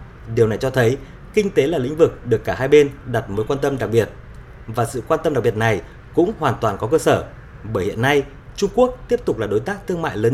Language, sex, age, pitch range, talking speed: Vietnamese, male, 20-39, 100-130 Hz, 260 wpm